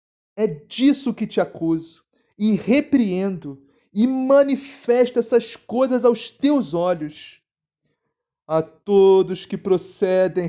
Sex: male